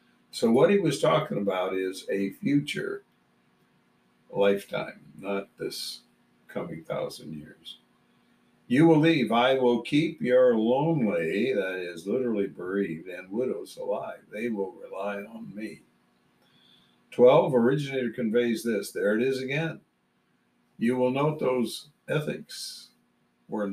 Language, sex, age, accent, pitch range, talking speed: English, male, 60-79, American, 95-145 Hz, 125 wpm